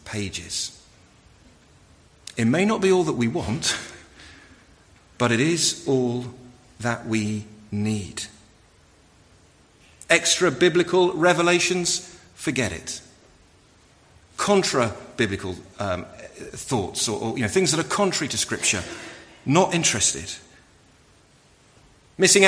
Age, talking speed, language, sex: 50-69, 100 wpm, English, male